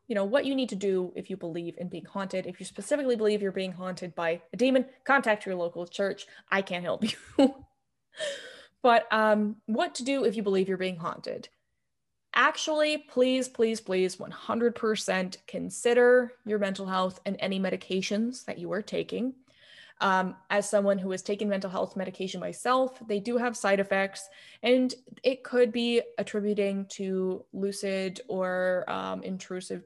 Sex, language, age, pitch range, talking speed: female, English, 20-39, 185-240 Hz, 165 wpm